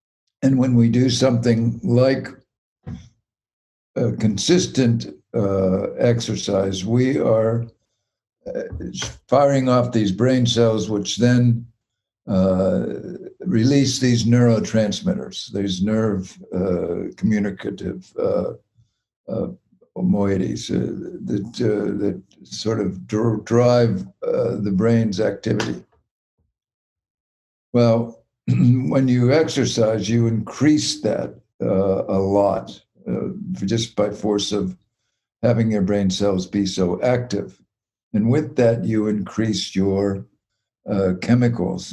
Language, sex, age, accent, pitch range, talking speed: English, male, 60-79, American, 100-120 Hz, 100 wpm